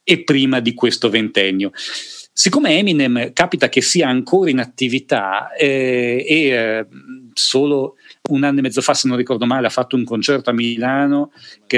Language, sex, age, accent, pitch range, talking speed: Italian, male, 40-59, native, 125-180 Hz, 170 wpm